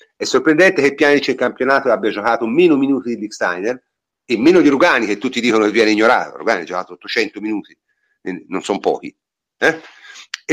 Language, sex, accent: Italian, male, native